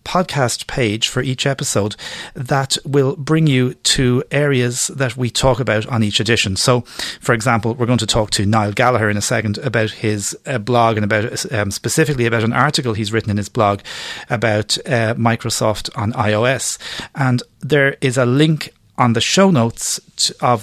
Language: English